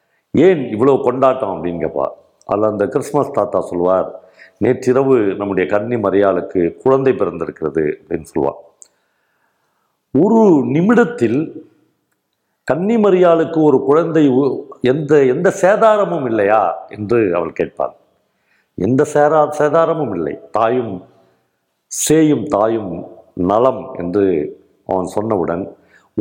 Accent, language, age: native, Tamil, 50-69